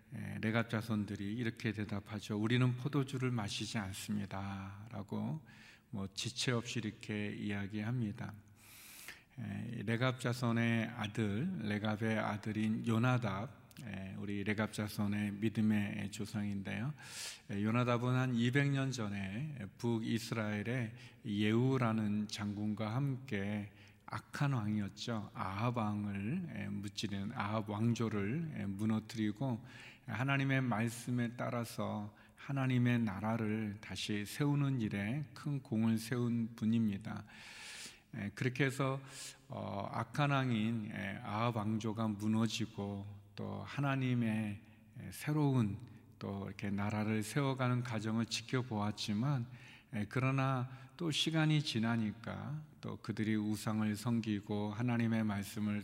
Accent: native